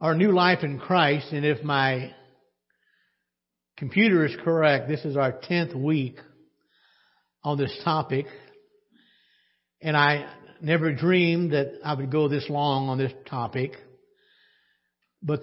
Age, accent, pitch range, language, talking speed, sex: 60-79, American, 135-170 Hz, English, 130 wpm, male